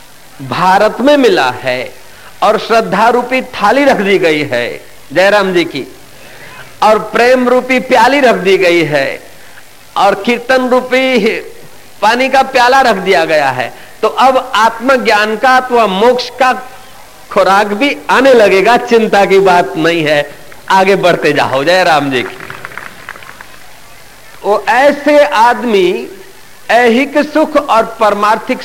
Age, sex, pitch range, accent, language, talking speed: 50-69, male, 195-260 Hz, native, Hindi, 135 wpm